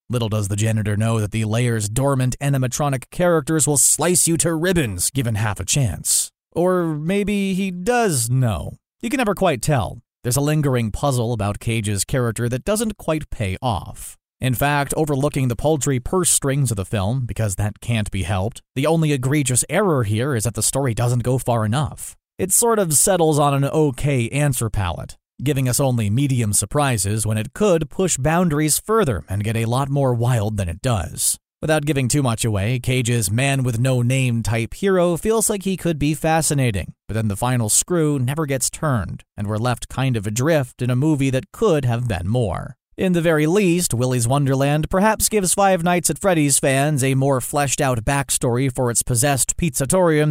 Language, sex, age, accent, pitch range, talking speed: English, male, 30-49, American, 115-155 Hz, 185 wpm